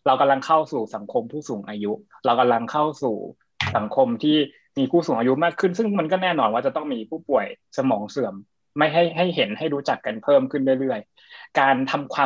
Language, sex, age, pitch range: Thai, male, 20-39, 125-165 Hz